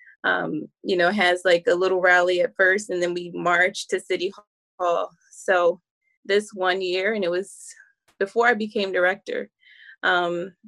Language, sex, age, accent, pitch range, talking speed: English, female, 20-39, American, 180-225 Hz, 165 wpm